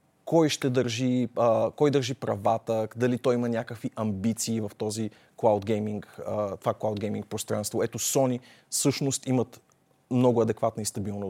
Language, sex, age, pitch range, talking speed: Bulgarian, male, 30-49, 100-125 Hz, 145 wpm